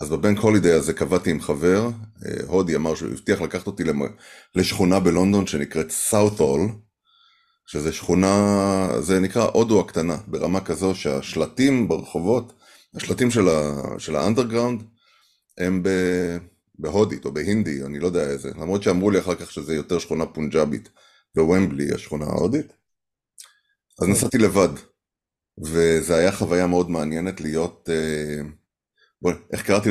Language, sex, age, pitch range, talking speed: Hebrew, male, 30-49, 85-105 Hz, 125 wpm